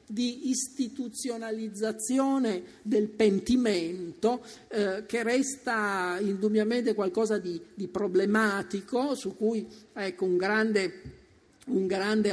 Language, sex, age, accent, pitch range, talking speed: Italian, male, 50-69, native, 185-230 Hz, 85 wpm